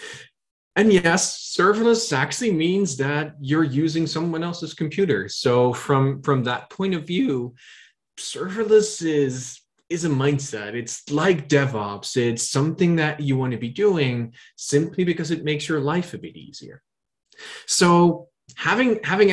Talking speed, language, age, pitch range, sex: 145 wpm, English, 20-39, 120-165 Hz, male